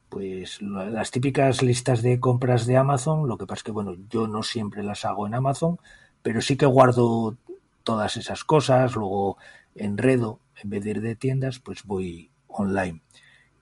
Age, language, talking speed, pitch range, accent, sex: 40-59, Spanish, 170 wpm, 95-135 Hz, Spanish, male